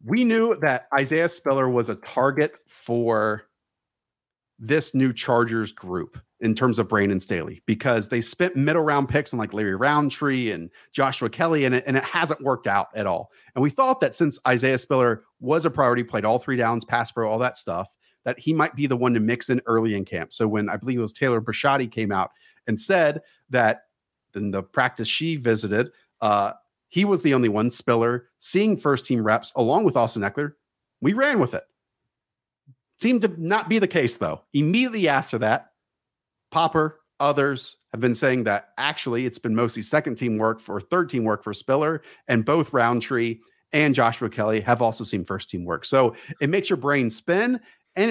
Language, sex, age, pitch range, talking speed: English, male, 40-59, 115-155 Hz, 195 wpm